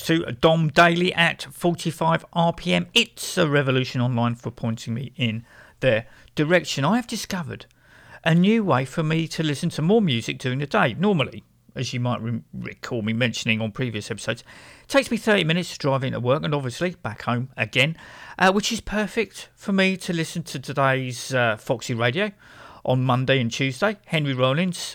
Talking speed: 180 wpm